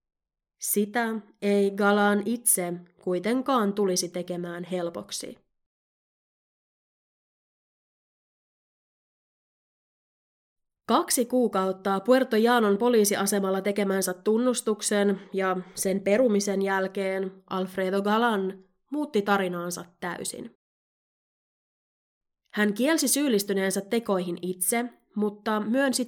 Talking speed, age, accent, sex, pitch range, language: 70 wpm, 20-39, native, female, 185-230 Hz, Finnish